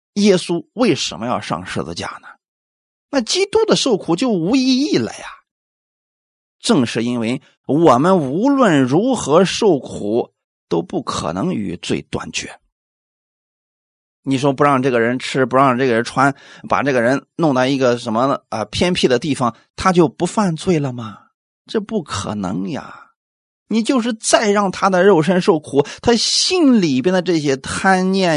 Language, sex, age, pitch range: Chinese, male, 30-49, 135-210 Hz